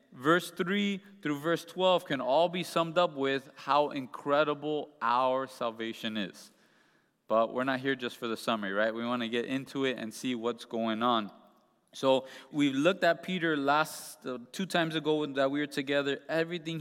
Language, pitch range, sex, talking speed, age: English, 130-155 Hz, male, 180 wpm, 20-39